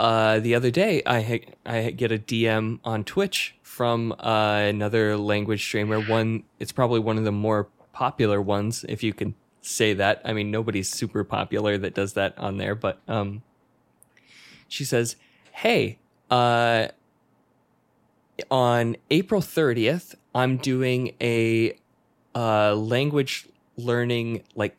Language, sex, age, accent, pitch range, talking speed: English, male, 20-39, American, 110-130 Hz, 135 wpm